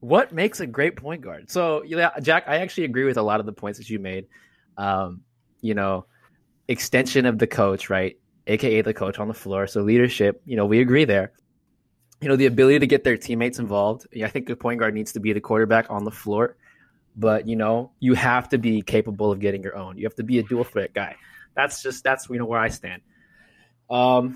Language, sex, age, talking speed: English, male, 20-39, 230 wpm